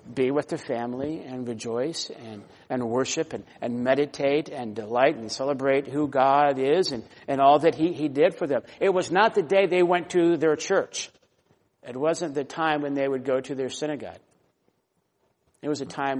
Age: 60-79